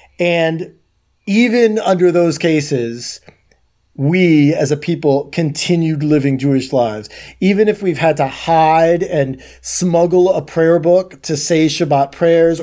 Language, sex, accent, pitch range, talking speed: English, male, American, 140-175 Hz, 135 wpm